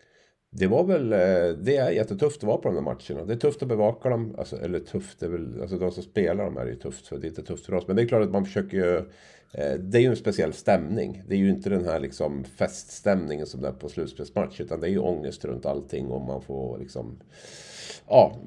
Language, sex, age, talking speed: Swedish, male, 50-69, 245 wpm